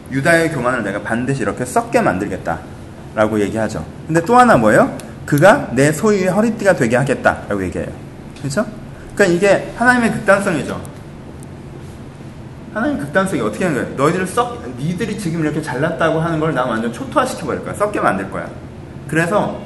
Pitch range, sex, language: 130-190 Hz, male, Korean